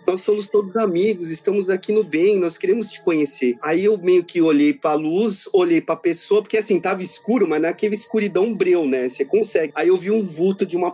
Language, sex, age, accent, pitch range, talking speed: Portuguese, male, 30-49, Brazilian, 170-230 Hz, 230 wpm